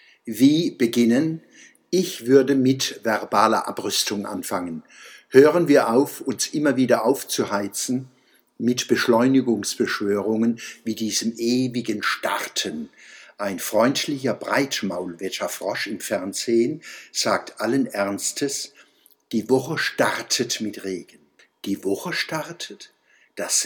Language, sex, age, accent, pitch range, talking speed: German, male, 60-79, German, 115-180 Hz, 95 wpm